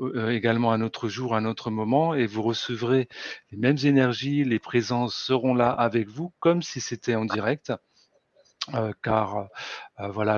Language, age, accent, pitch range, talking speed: French, 40-59, French, 115-135 Hz, 160 wpm